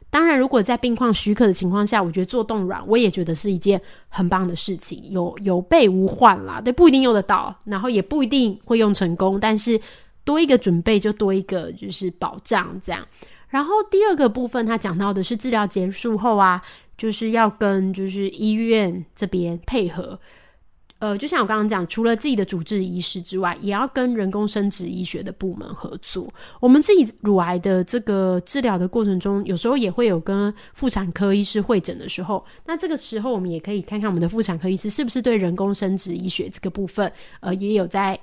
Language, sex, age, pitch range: Chinese, female, 20-39, 185-230 Hz